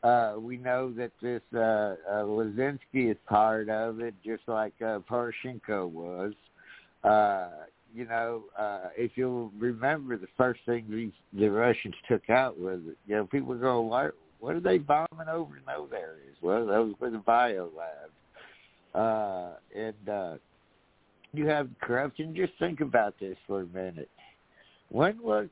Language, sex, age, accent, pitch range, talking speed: English, male, 60-79, American, 100-125 Hz, 160 wpm